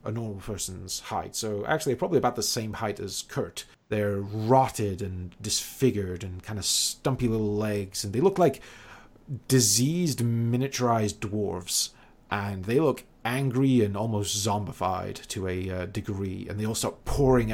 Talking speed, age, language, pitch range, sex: 155 wpm, 30-49, English, 100-120 Hz, male